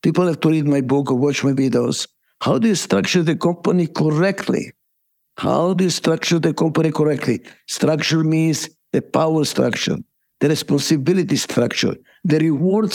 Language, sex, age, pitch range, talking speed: English, male, 60-79, 150-180 Hz, 160 wpm